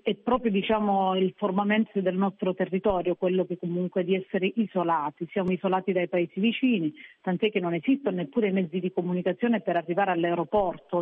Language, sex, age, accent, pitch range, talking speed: Italian, female, 40-59, native, 180-210 Hz, 170 wpm